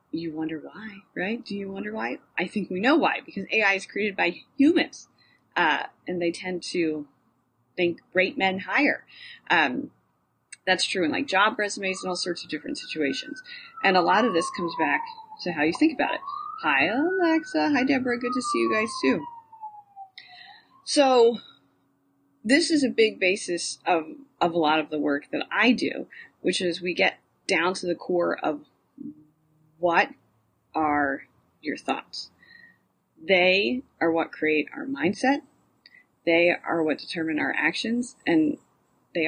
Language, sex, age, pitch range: English, female, 30-49, 170-280 Hz